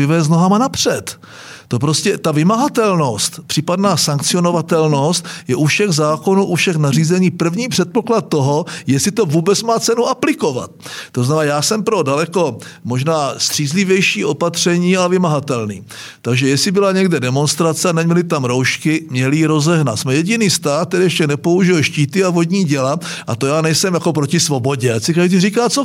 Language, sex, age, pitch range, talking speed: Czech, male, 50-69, 145-190 Hz, 160 wpm